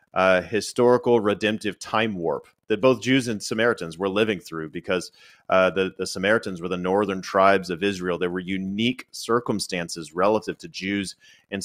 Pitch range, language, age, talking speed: 95-125 Hz, English, 30-49, 165 wpm